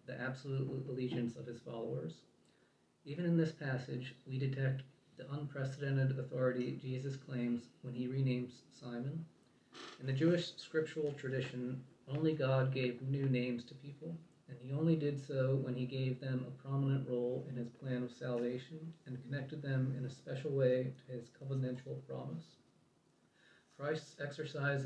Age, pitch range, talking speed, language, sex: 40-59, 125-140 Hz, 150 wpm, English, male